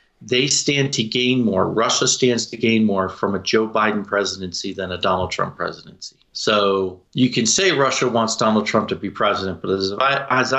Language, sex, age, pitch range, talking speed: English, male, 40-59, 100-125 Hz, 195 wpm